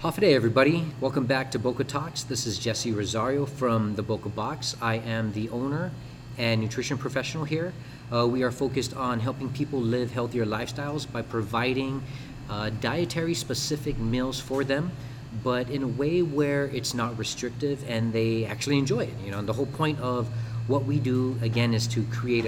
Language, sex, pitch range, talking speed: English, male, 115-135 Hz, 180 wpm